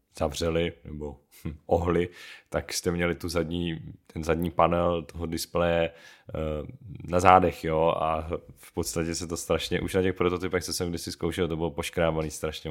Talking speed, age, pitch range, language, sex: 170 wpm, 30-49, 80-90 Hz, Czech, male